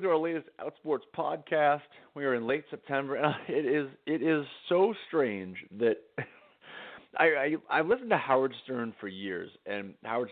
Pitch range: 115-170 Hz